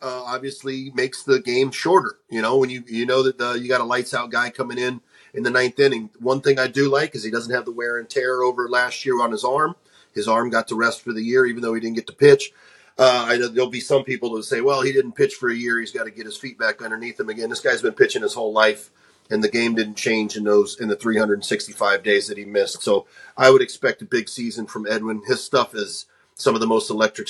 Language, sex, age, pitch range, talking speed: English, male, 30-49, 110-130 Hz, 275 wpm